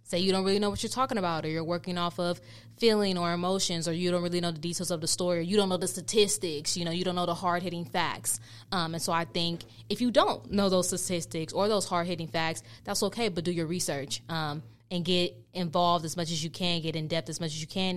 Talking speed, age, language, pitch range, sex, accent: 260 wpm, 20-39, English, 155-180 Hz, female, American